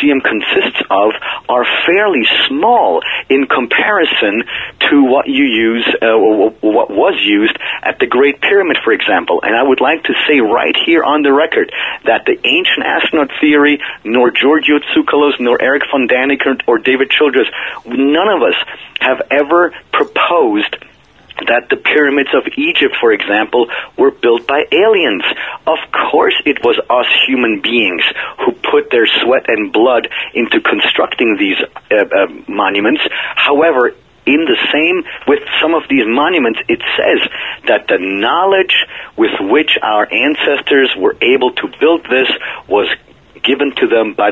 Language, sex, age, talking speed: English, male, 40-59, 150 wpm